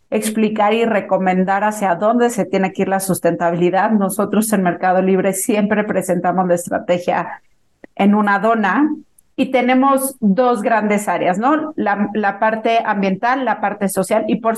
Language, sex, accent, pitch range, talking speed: Spanish, female, Mexican, 190-230 Hz, 150 wpm